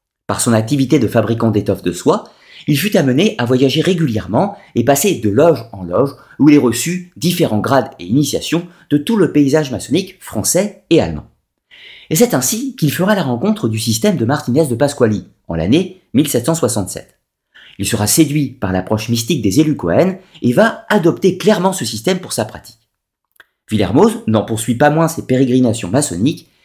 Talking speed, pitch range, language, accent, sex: 175 wpm, 115-175 Hz, French, French, male